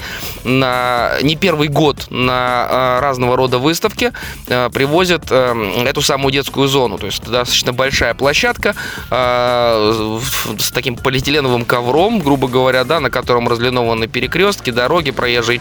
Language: Russian